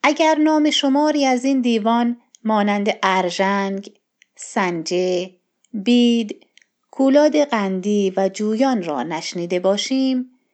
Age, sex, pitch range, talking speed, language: 30-49, female, 190-250 Hz, 95 wpm, Persian